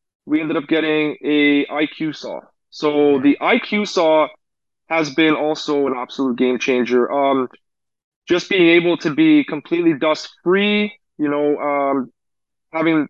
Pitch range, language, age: 135-165 Hz, English, 20-39